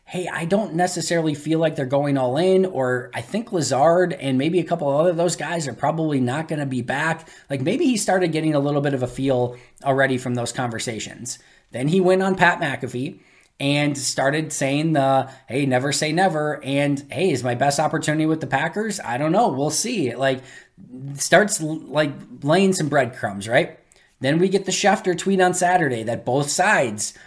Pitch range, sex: 130-170 Hz, male